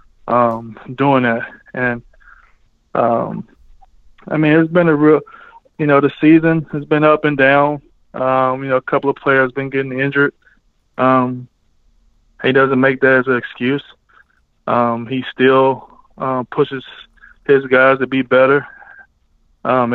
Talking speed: 145 wpm